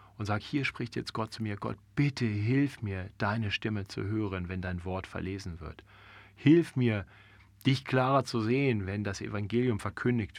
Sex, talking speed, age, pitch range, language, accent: male, 180 wpm, 40-59, 105-135 Hz, German, German